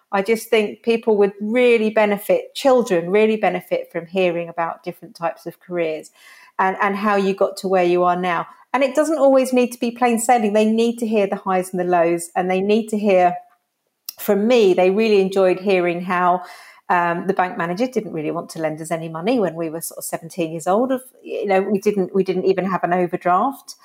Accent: British